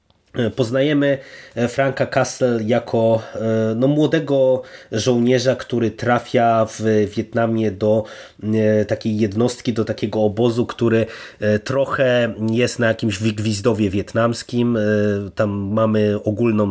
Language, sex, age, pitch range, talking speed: Polish, male, 20-39, 110-125 Hz, 95 wpm